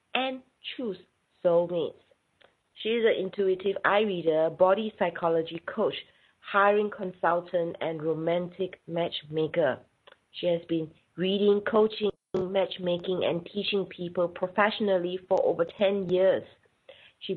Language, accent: English, Malaysian